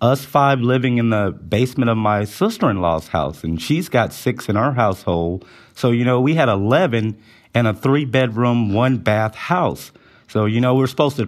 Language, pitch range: English, 105-135 Hz